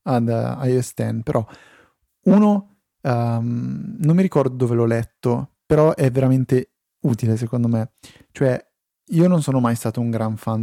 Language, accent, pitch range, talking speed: Italian, native, 115-135 Hz, 160 wpm